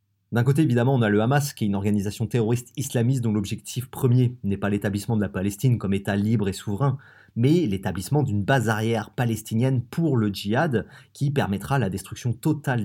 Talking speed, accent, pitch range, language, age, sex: 190 wpm, French, 105-130 Hz, French, 30-49, male